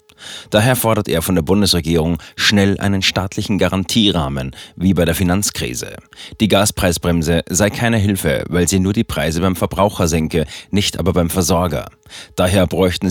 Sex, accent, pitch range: male, German, 85-105 Hz